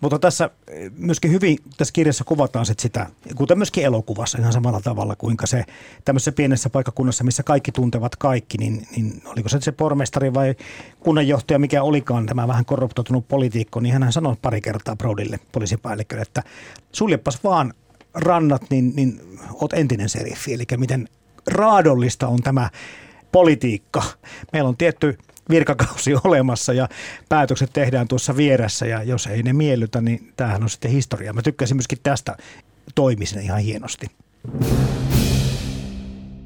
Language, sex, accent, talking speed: Finnish, male, native, 140 wpm